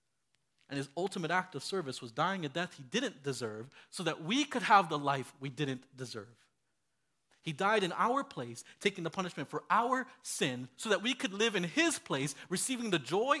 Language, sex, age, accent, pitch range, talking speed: English, male, 30-49, American, 155-240 Hz, 200 wpm